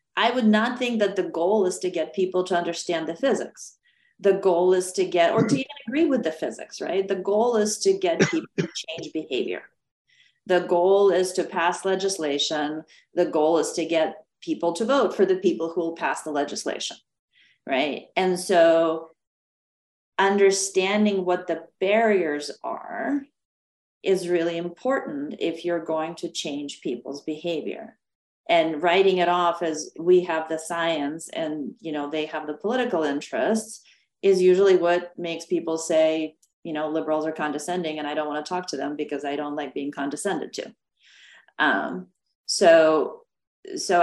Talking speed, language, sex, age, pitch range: 170 wpm, English, female, 40-59, 160-200 Hz